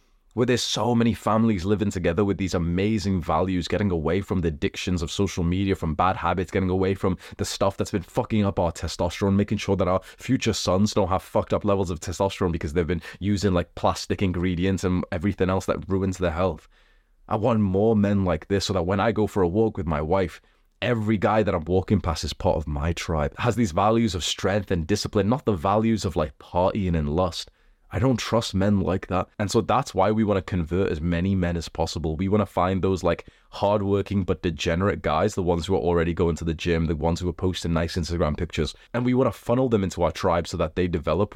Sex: male